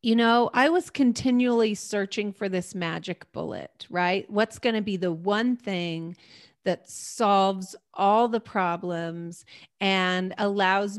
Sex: female